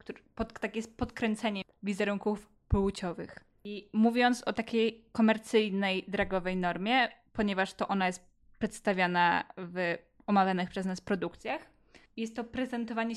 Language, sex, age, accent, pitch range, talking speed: Polish, female, 10-29, native, 195-220 Hz, 115 wpm